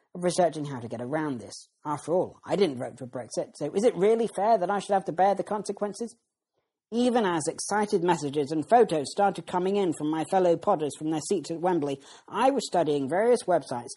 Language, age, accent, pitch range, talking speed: English, 40-59, British, 145-195 Hz, 210 wpm